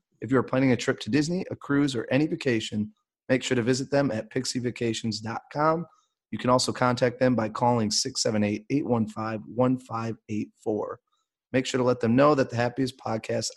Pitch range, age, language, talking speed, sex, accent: 110-140 Hz, 30-49, English, 165 wpm, male, American